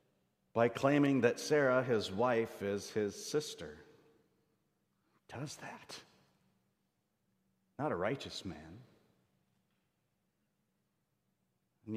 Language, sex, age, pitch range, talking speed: English, male, 50-69, 115-165 Hz, 80 wpm